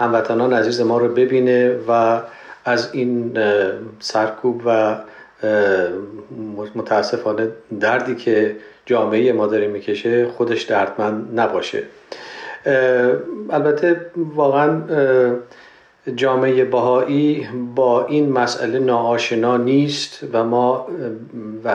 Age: 40-59